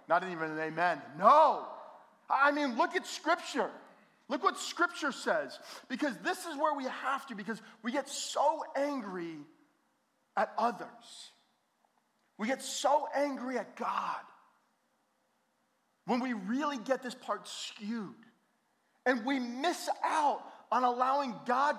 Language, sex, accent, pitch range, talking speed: English, male, American, 205-285 Hz, 130 wpm